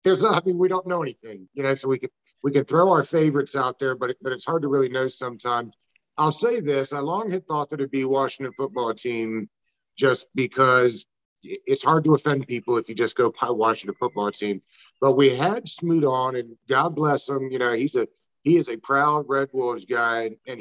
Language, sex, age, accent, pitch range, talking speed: English, male, 50-69, American, 125-155 Hz, 220 wpm